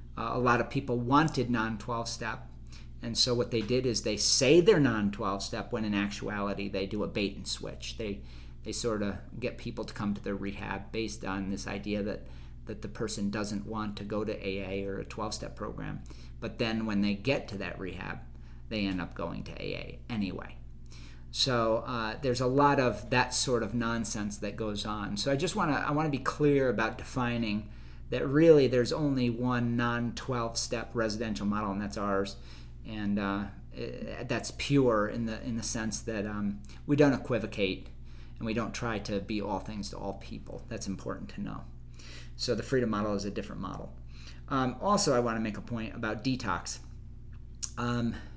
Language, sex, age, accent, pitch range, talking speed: English, male, 50-69, American, 100-120 Hz, 185 wpm